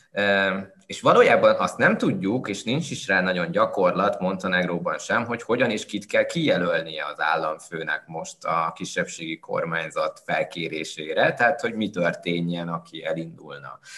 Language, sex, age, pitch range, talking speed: Hungarian, male, 20-39, 85-130 Hz, 145 wpm